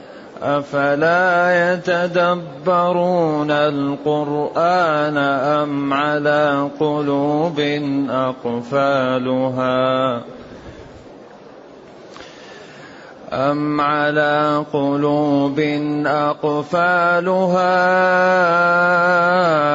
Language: Arabic